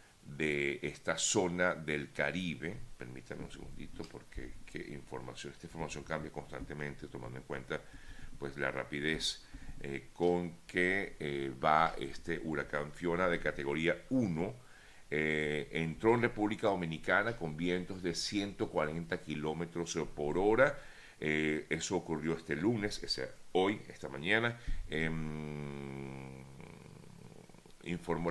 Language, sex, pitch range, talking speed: Spanish, male, 75-95 Hz, 120 wpm